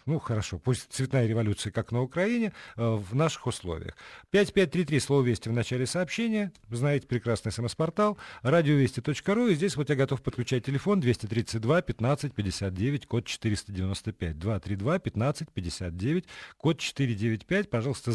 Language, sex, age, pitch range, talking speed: Russian, male, 50-69, 110-150 Hz, 120 wpm